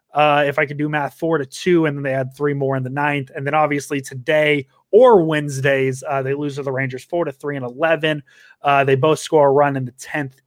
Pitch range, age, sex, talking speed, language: 135-170 Hz, 20-39, male, 250 wpm, English